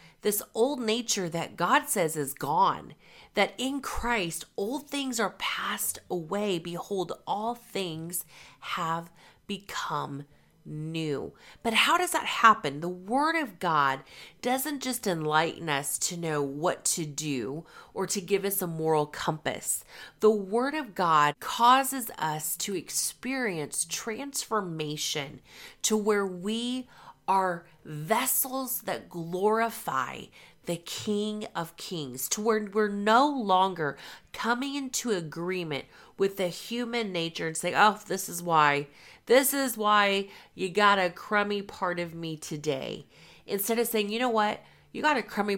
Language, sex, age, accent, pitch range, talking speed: English, female, 30-49, American, 160-220 Hz, 140 wpm